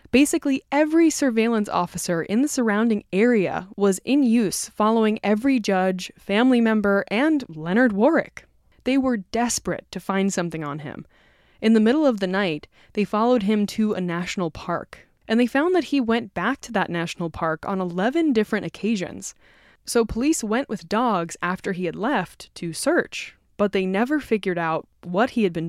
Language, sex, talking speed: English, female, 175 wpm